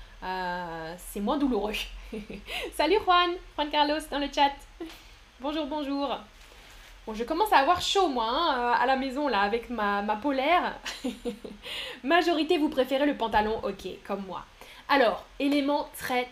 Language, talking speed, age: French, 145 wpm, 10-29